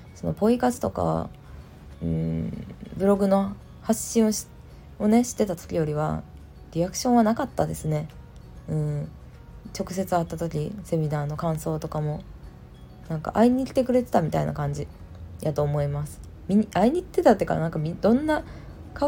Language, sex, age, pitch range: Japanese, female, 20-39, 145-220 Hz